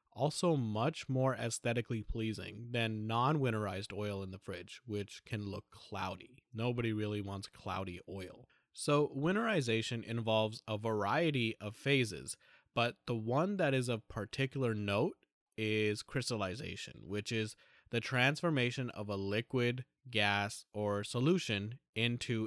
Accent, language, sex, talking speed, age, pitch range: American, English, male, 130 wpm, 20-39, 100-125 Hz